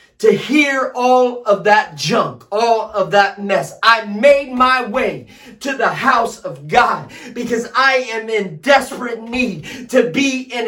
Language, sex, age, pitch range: English, male, 40-59, 200-275 Hz